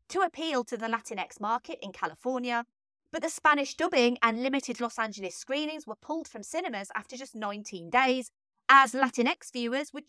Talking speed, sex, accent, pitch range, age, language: 170 wpm, female, British, 230-320 Hz, 30-49, English